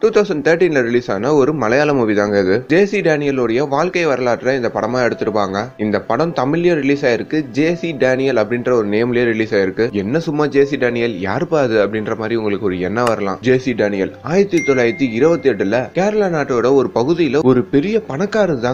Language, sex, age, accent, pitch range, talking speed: Tamil, male, 20-39, native, 125-185 Hz, 95 wpm